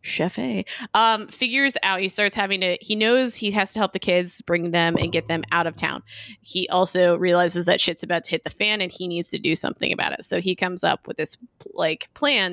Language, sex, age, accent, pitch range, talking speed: English, female, 20-39, American, 170-195 Hz, 245 wpm